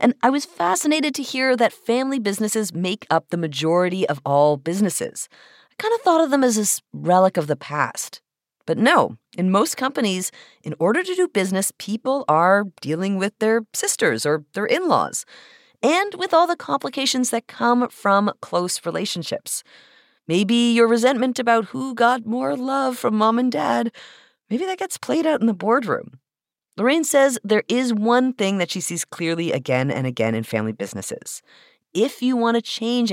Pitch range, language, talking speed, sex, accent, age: 170-255 Hz, English, 180 wpm, female, American, 30-49